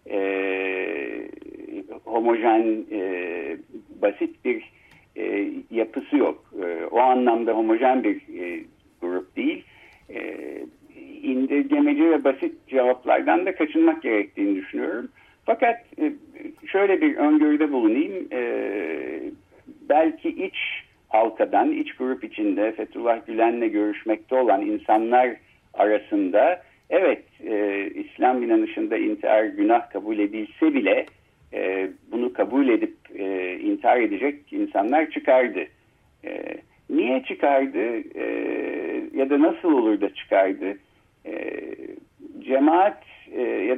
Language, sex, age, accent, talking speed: Turkish, male, 60-79, native, 105 wpm